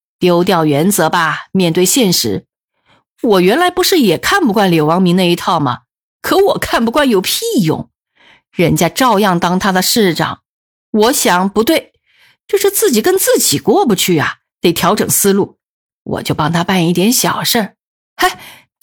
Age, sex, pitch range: 50-69, female, 175-255 Hz